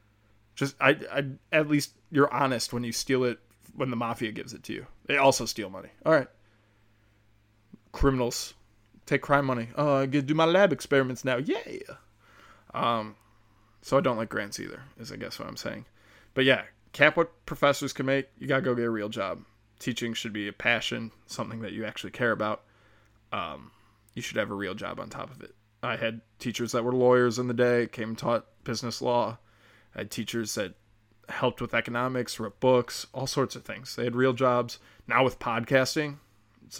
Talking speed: 195 wpm